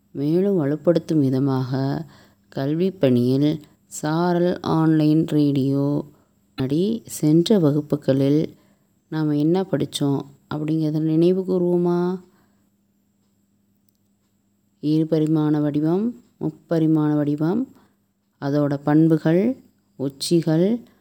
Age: 20-39